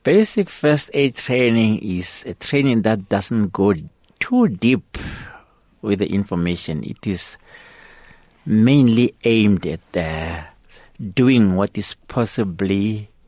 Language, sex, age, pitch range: English, male, 60-79, 85-110 Hz